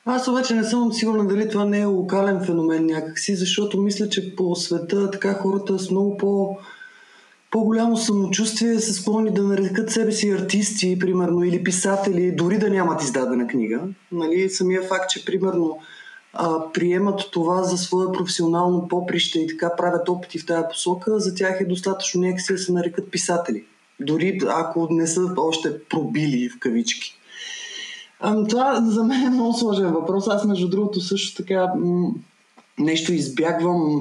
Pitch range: 175-210 Hz